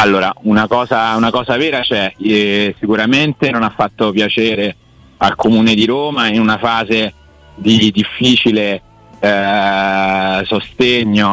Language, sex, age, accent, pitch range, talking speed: Italian, male, 30-49, native, 100-115 Hz, 115 wpm